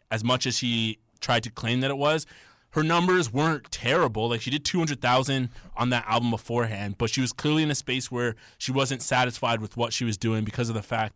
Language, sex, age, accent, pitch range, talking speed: English, male, 20-39, American, 115-140 Hz, 225 wpm